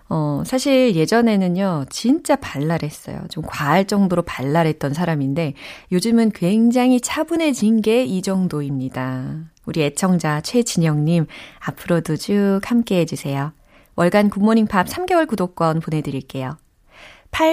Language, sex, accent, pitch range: Korean, female, native, 155-225 Hz